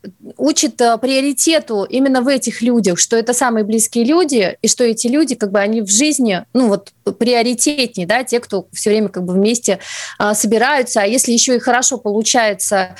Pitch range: 215-260 Hz